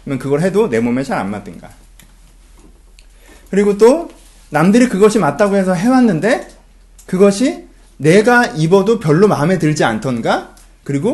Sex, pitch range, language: male, 145-215 Hz, Korean